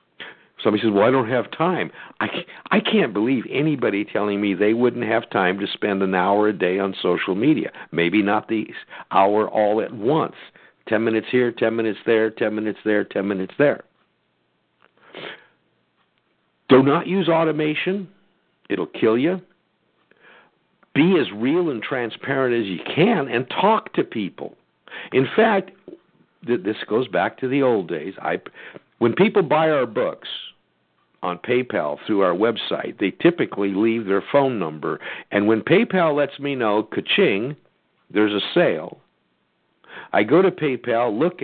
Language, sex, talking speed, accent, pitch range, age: English, male, 155 wpm, American, 105-155 Hz, 60-79